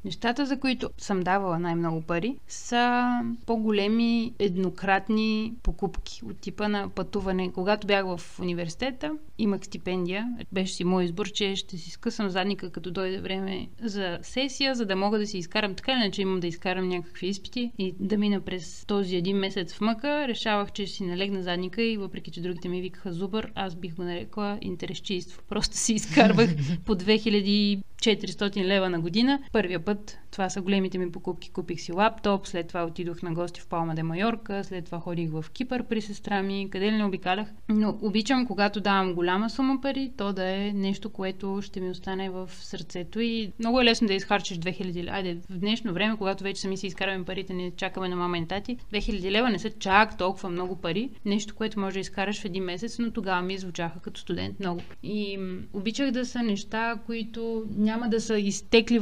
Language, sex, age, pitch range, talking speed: Bulgarian, female, 30-49, 185-220 Hz, 190 wpm